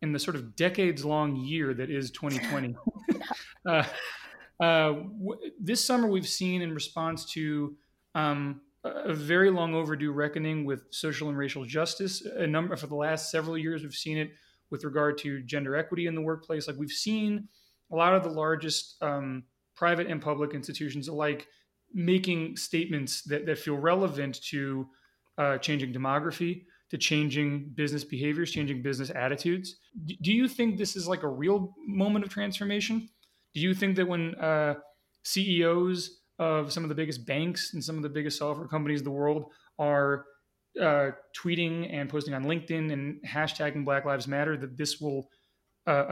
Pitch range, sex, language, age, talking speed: 145-175 Hz, male, English, 30-49, 170 wpm